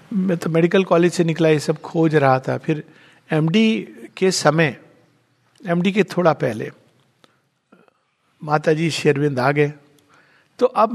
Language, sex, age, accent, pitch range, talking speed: Hindi, male, 50-69, native, 150-200 Hz, 140 wpm